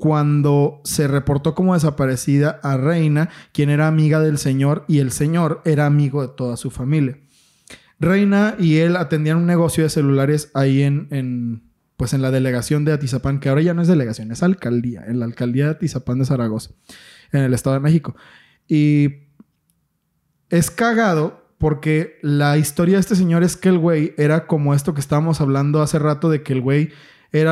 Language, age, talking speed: Spanish, 20-39, 180 wpm